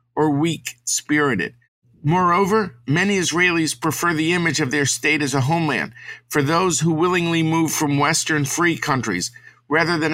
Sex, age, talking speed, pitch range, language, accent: male, 50-69, 150 wpm, 125-160 Hz, English, American